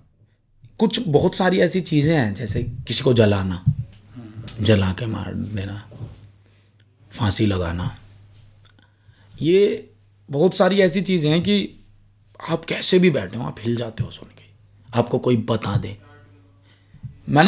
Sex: male